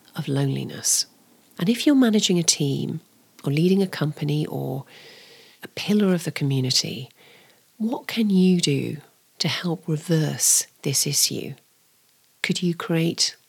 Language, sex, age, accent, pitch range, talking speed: English, female, 40-59, British, 155-190 Hz, 135 wpm